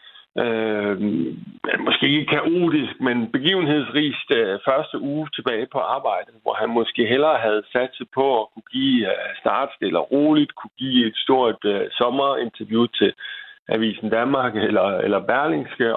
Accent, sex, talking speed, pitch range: native, male, 145 wpm, 110-135 Hz